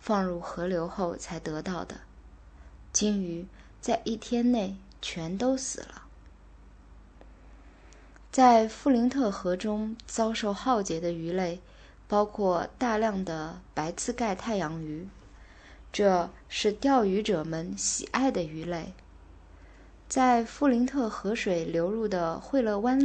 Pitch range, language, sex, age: 165-225 Hz, Chinese, female, 20-39